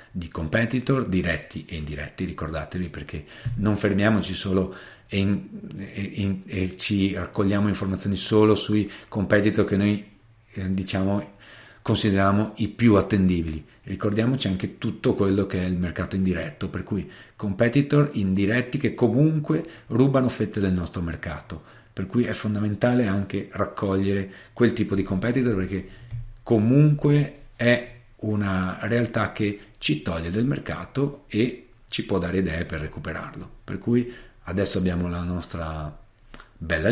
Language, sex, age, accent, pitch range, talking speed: Italian, male, 40-59, native, 90-115 Hz, 130 wpm